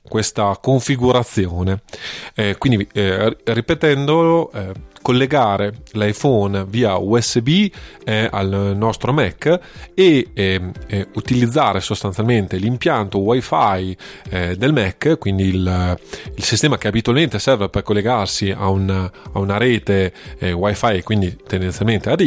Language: Italian